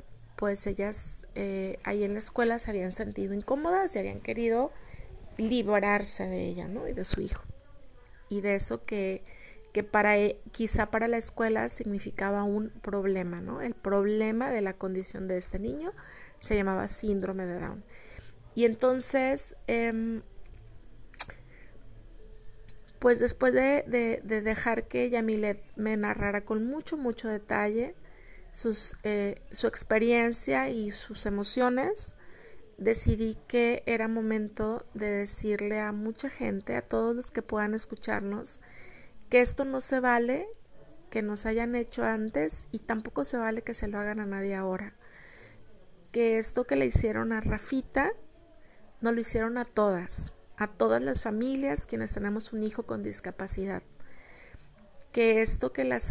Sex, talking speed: female, 145 wpm